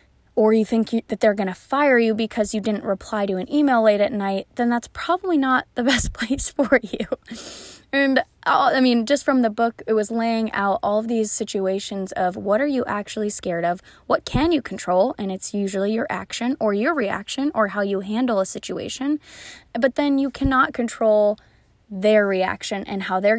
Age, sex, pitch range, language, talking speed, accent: 10-29, female, 200-240 Hz, English, 200 wpm, American